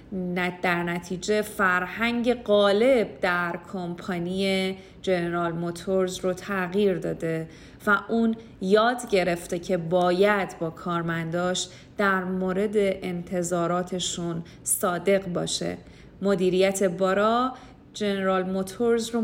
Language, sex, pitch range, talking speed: Persian, female, 180-220 Hz, 90 wpm